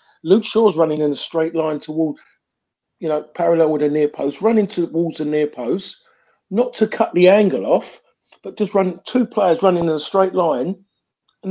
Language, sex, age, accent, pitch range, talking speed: English, male, 50-69, British, 155-200 Hz, 195 wpm